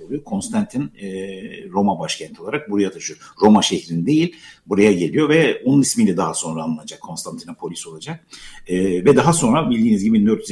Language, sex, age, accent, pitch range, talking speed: Turkish, male, 60-79, native, 100-165 Hz, 135 wpm